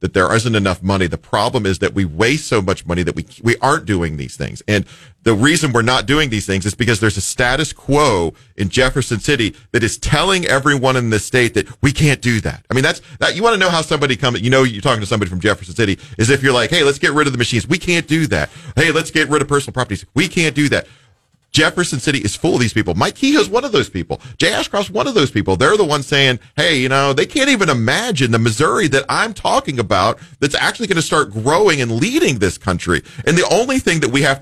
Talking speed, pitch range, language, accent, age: 260 wpm, 110-150 Hz, English, American, 40-59